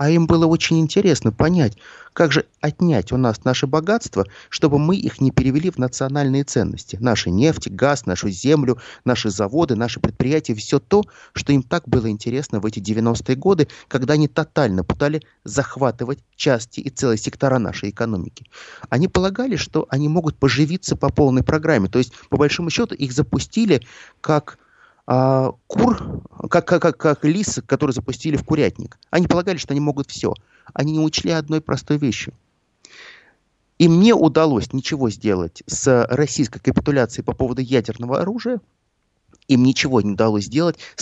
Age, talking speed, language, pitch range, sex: 30-49, 160 wpm, Russian, 115-155 Hz, male